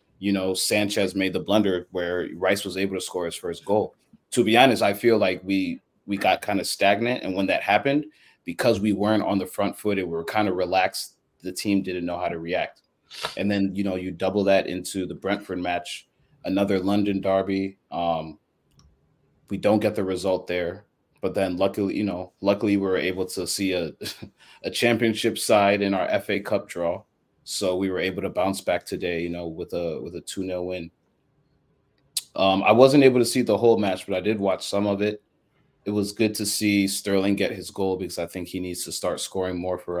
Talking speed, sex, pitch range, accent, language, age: 215 wpm, male, 90-100 Hz, American, English, 30-49